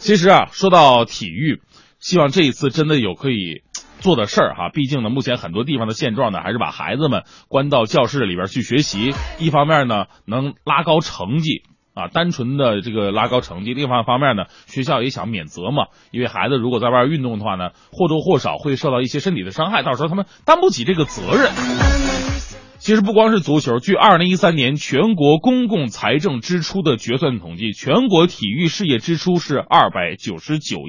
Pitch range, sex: 125-185 Hz, male